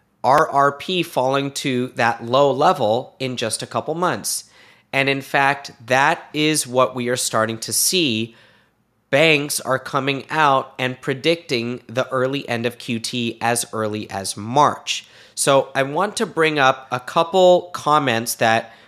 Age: 30-49